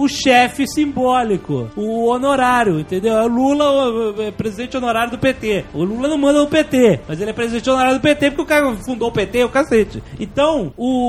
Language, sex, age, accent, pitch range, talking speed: Portuguese, male, 30-49, Brazilian, 190-250 Hz, 200 wpm